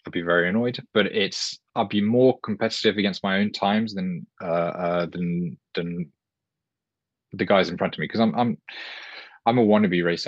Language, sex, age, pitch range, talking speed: English, male, 20-39, 90-115 Hz, 185 wpm